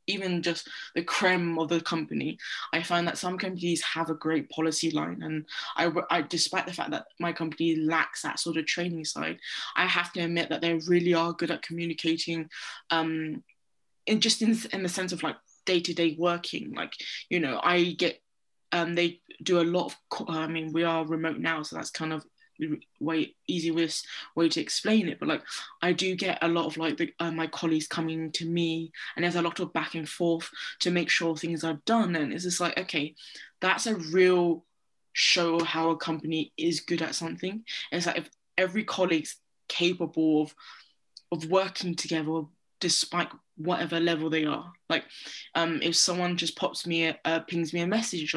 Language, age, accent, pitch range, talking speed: English, 20-39, British, 160-175 Hz, 195 wpm